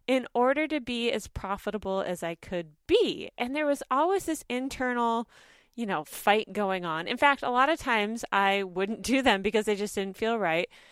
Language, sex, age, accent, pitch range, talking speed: English, female, 30-49, American, 200-285 Hz, 205 wpm